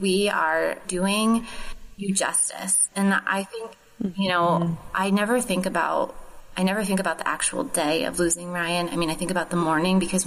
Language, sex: English, female